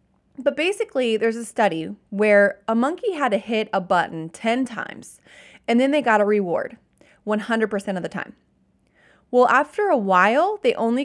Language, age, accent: English, 30-49, American